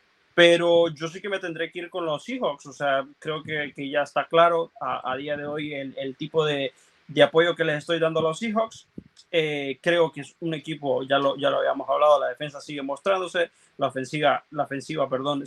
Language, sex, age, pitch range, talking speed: Spanish, male, 20-39, 140-180 Hz, 225 wpm